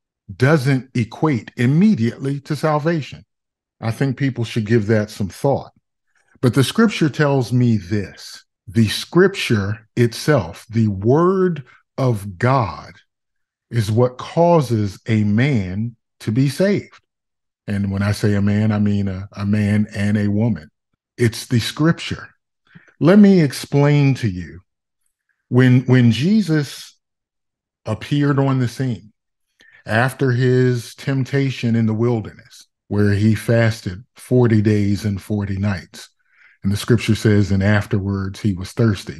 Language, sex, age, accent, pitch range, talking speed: English, male, 40-59, American, 105-130 Hz, 130 wpm